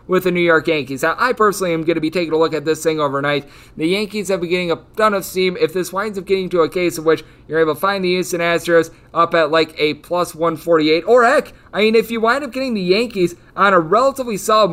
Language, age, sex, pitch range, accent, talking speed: English, 30-49, male, 140-180 Hz, American, 270 wpm